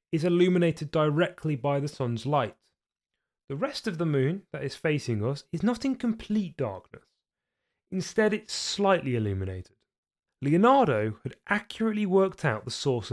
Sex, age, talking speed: male, 30-49, 145 wpm